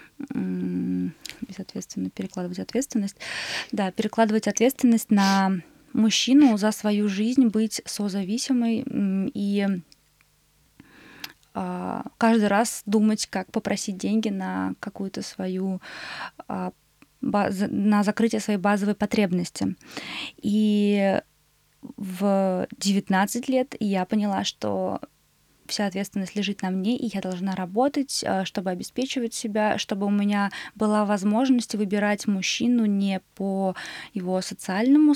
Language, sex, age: Russian, female, 20-39